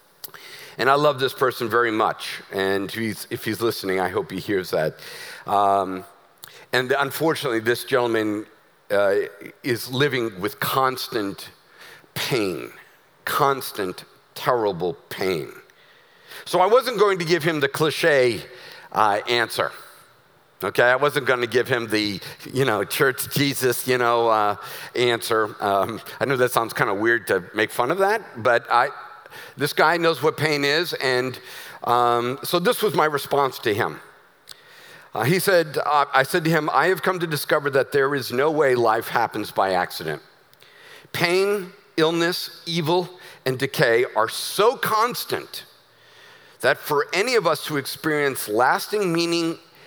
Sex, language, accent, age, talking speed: male, English, American, 50-69, 150 wpm